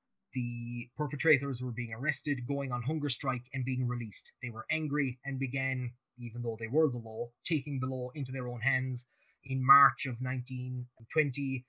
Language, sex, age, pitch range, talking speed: English, male, 20-39, 120-145 Hz, 175 wpm